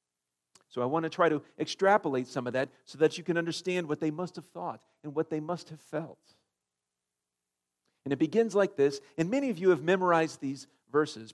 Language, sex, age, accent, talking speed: English, male, 50-69, American, 205 wpm